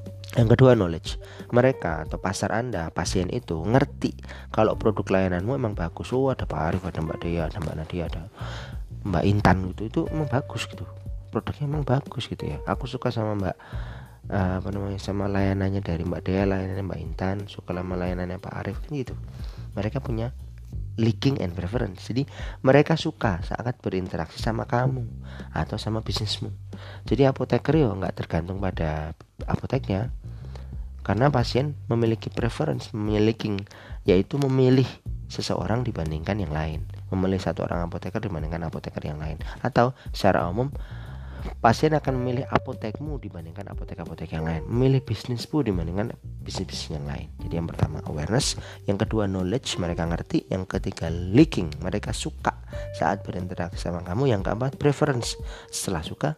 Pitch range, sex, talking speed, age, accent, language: 85-120 Hz, male, 150 wpm, 30-49, native, Indonesian